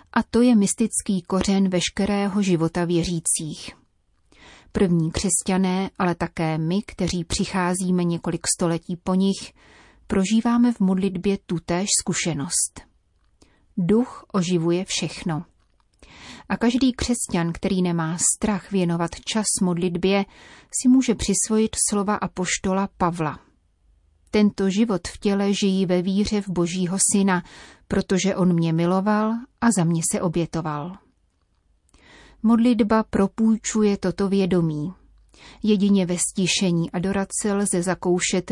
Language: Czech